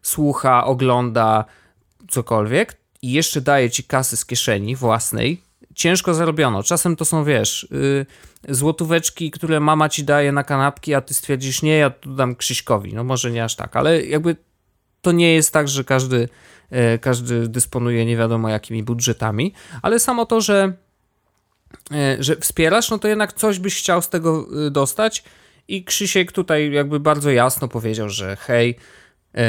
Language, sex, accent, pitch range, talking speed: Polish, male, native, 120-155 Hz, 155 wpm